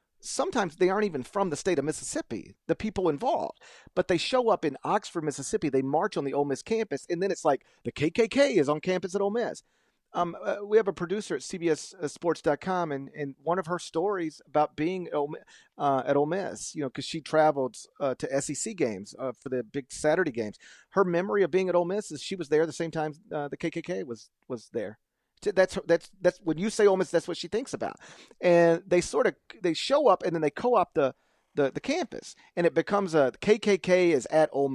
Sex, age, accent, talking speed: male, 40-59, American, 230 wpm